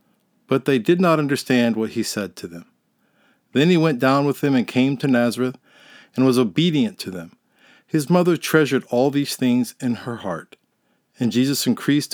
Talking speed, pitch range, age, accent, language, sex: 185 wpm, 125-185 Hz, 50-69, American, English, male